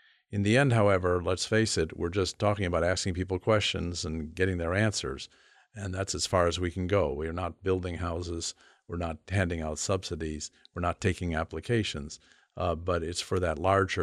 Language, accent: English, American